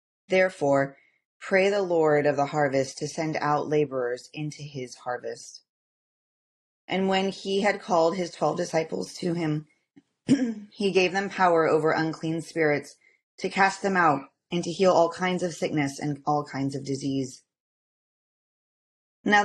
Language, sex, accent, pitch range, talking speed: English, female, American, 145-180 Hz, 150 wpm